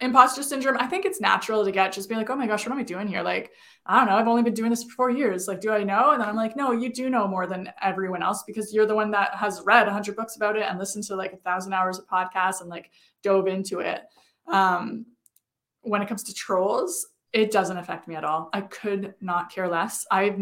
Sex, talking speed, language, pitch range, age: female, 265 wpm, English, 190-240 Hz, 20-39